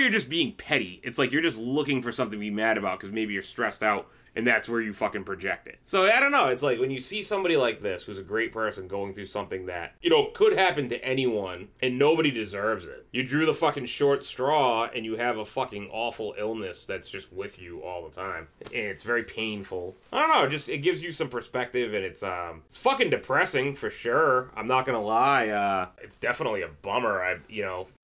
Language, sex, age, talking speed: English, male, 30-49, 240 wpm